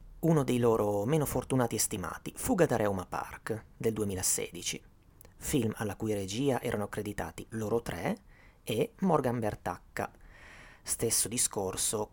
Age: 30-49